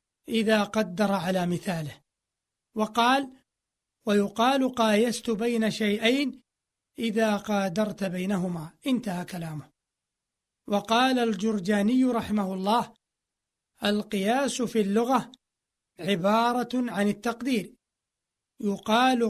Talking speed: 80 wpm